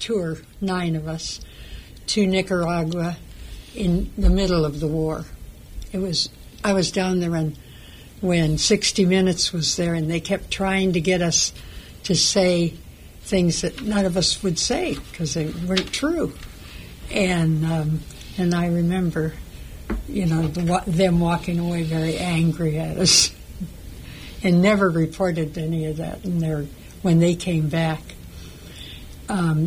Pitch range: 160-185 Hz